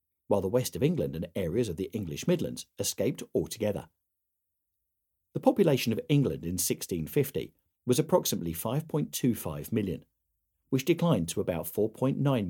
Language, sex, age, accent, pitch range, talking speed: English, male, 40-59, British, 85-125 Hz, 135 wpm